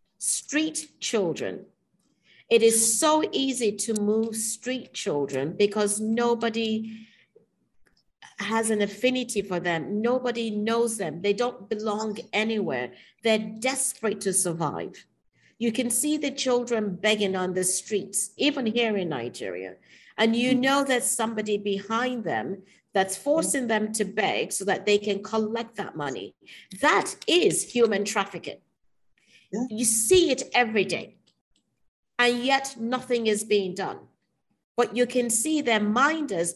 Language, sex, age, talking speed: English, female, 50-69, 135 wpm